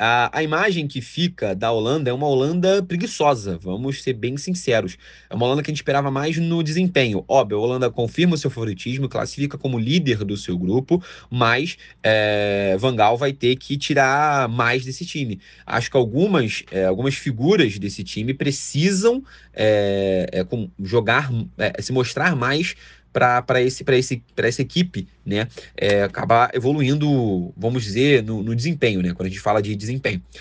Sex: male